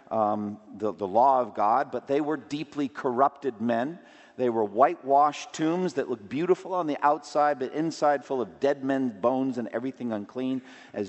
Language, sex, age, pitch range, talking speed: English, male, 50-69, 110-145 Hz, 180 wpm